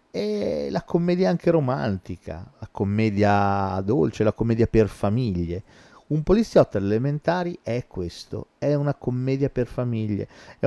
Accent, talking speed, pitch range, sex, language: native, 130 wpm, 95-145 Hz, male, Italian